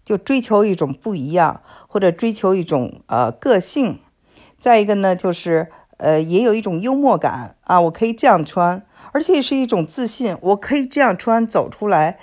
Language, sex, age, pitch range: Chinese, female, 50-69, 155-215 Hz